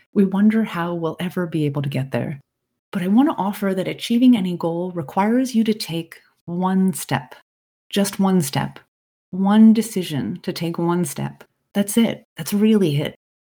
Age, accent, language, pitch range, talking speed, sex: 30-49, American, English, 165-210 Hz, 170 wpm, female